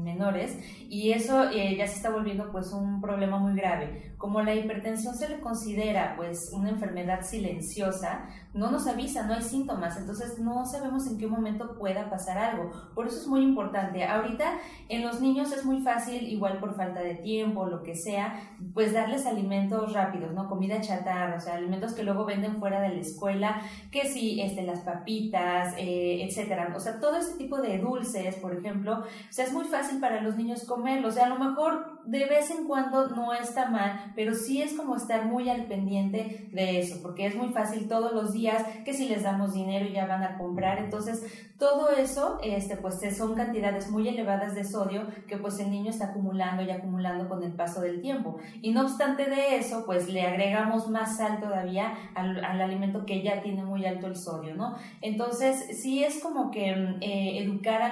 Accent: Mexican